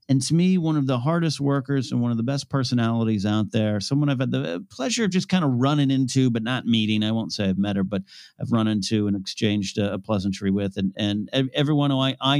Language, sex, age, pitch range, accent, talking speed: English, male, 40-59, 115-145 Hz, American, 250 wpm